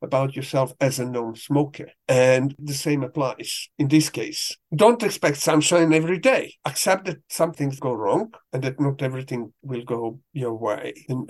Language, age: English, 50-69